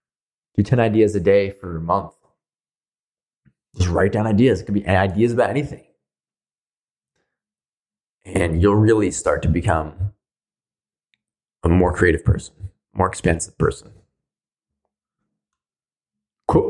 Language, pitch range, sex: English, 95-115 Hz, male